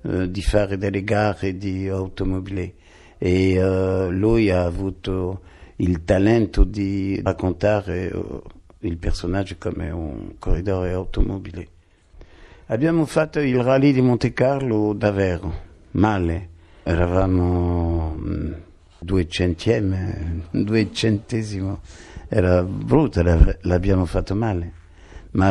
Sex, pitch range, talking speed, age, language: male, 90-110 Hz, 100 wpm, 60-79, Italian